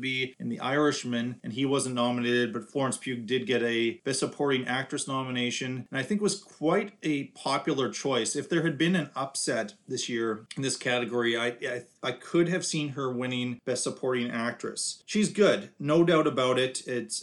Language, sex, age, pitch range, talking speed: English, male, 30-49, 120-140 Hz, 190 wpm